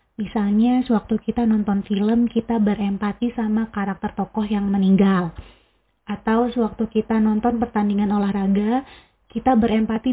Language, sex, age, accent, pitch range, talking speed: Indonesian, female, 20-39, native, 210-250 Hz, 120 wpm